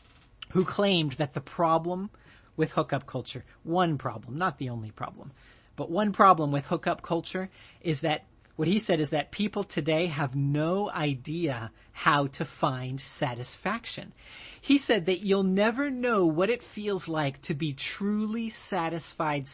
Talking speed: 155 wpm